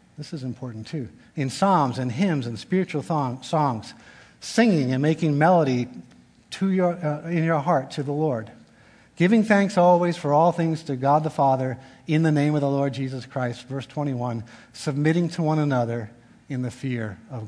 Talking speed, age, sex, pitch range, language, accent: 180 wpm, 50-69, male, 125-155 Hz, English, American